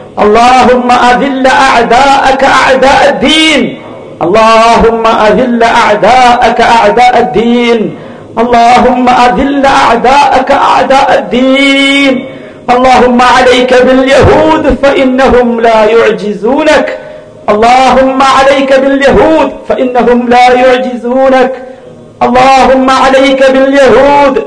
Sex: male